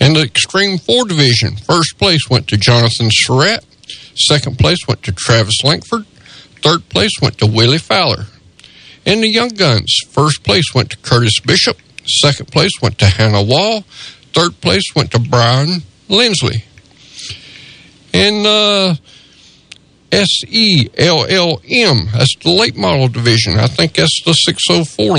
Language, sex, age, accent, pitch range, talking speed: English, male, 50-69, American, 115-165 Hz, 140 wpm